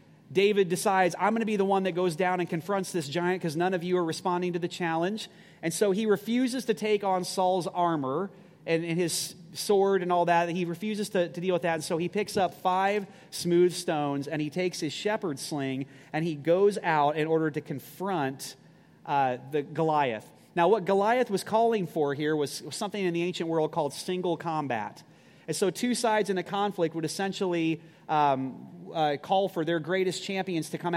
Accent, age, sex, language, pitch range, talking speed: American, 30-49, male, English, 155-195 Hz, 205 wpm